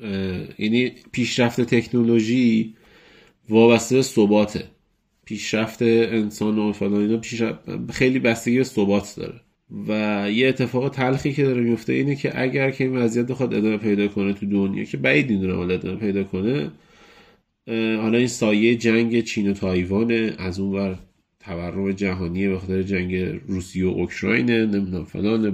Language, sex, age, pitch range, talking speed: Persian, male, 30-49, 100-125 Hz, 140 wpm